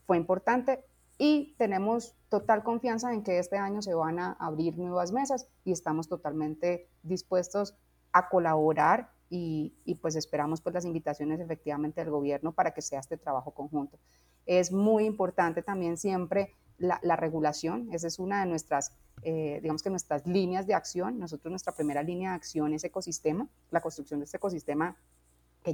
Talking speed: 170 wpm